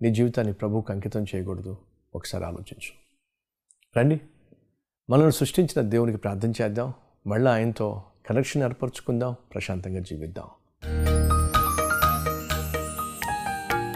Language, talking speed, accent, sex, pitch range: Telugu, 80 wpm, native, male, 95-130 Hz